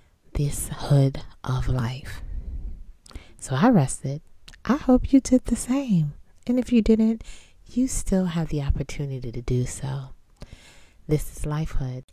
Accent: American